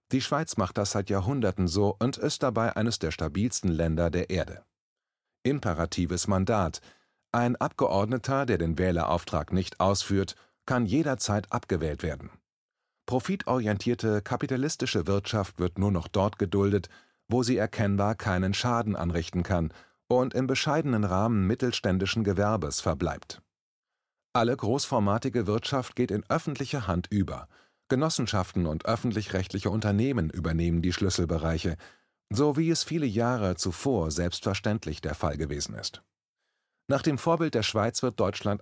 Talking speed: 130 wpm